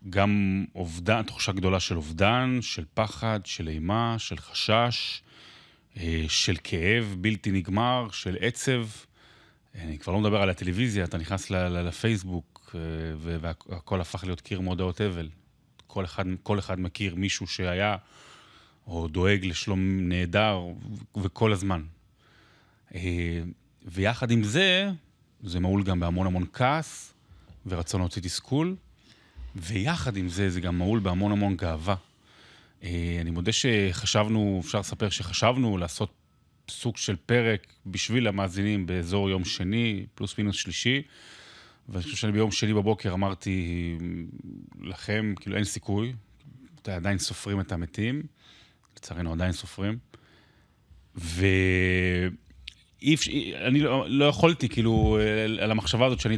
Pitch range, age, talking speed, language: 90-110 Hz, 30-49, 120 wpm, Hebrew